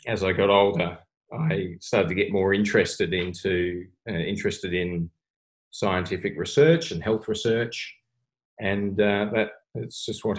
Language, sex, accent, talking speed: English, male, Australian, 145 wpm